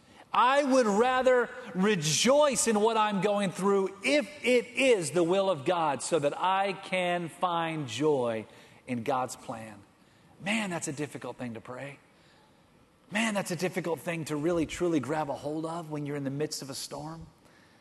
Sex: male